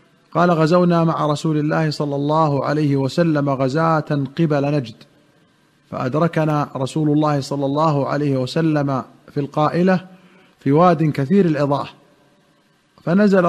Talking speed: 115 wpm